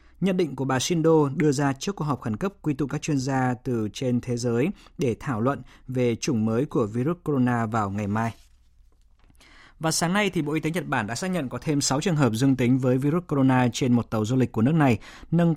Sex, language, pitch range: male, Vietnamese, 120-150 Hz